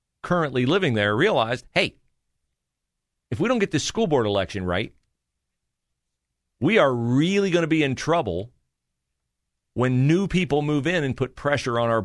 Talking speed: 160 wpm